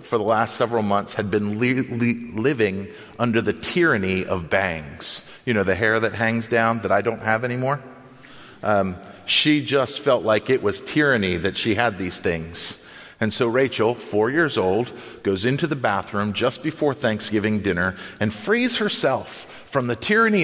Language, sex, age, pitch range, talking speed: English, male, 40-59, 105-135 Hz, 175 wpm